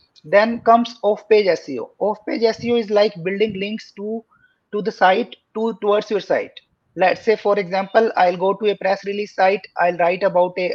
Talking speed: 180 wpm